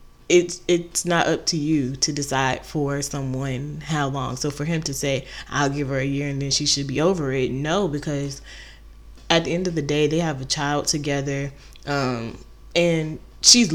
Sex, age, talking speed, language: female, 20-39, 195 wpm, English